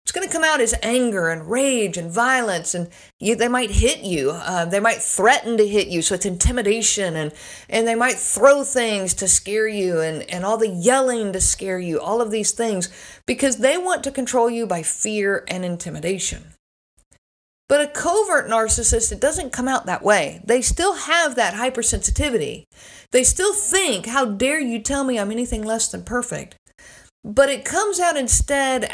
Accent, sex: American, female